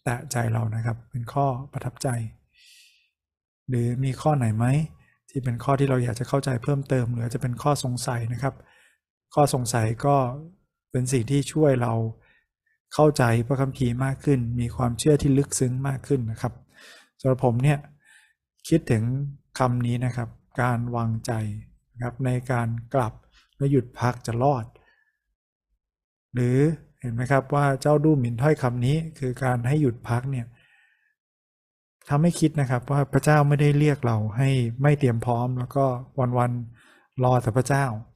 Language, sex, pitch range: Thai, male, 120-140 Hz